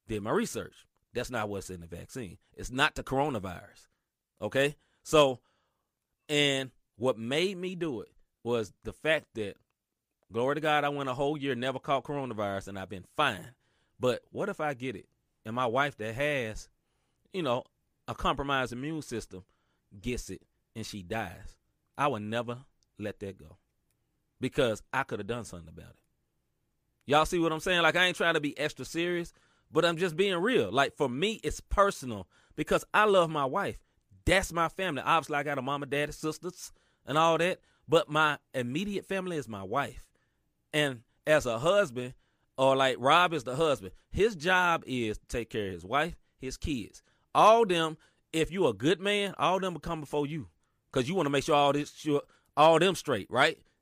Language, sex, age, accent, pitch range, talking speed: English, male, 30-49, American, 115-160 Hz, 190 wpm